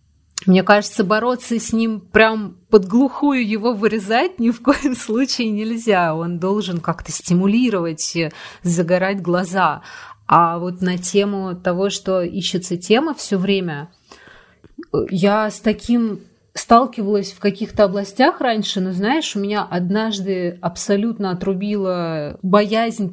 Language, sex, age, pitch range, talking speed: Russian, female, 30-49, 180-220 Hz, 125 wpm